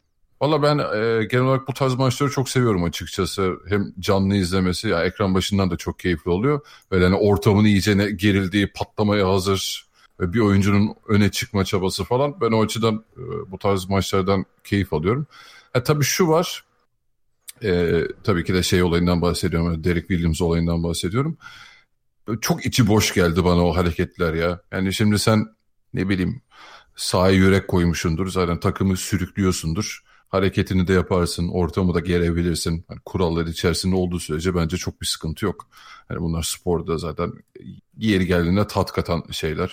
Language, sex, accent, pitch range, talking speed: Turkish, male, native, 90-110 Hz, 155 wpm